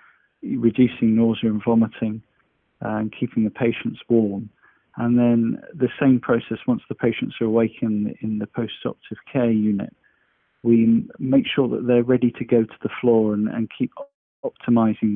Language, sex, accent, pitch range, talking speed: English, male, British, 105-120 Hz, 155 wpm